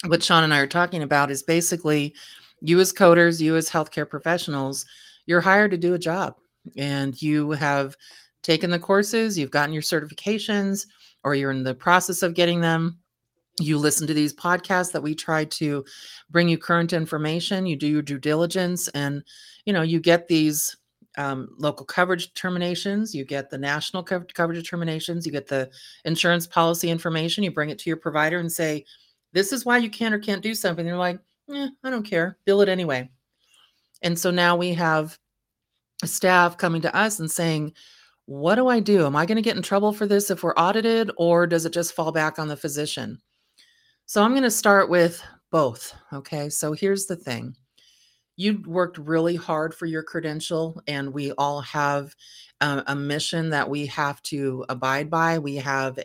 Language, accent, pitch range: English, American, 145-180 Hz